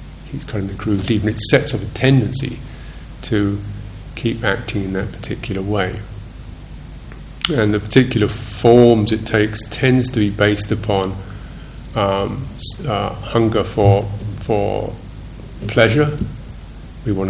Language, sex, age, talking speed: English, male, 50-69, 120 wpm